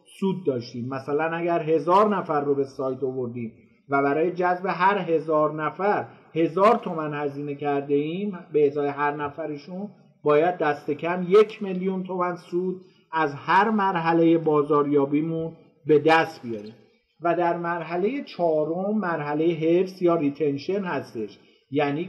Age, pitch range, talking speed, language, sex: 50-69, 145-180 Hz, 135 wpm, Persian, male